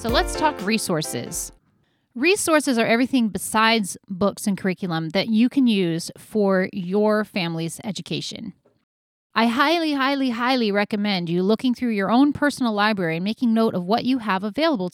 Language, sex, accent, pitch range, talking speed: English, female, American, 195-260 Hz, 155 wpm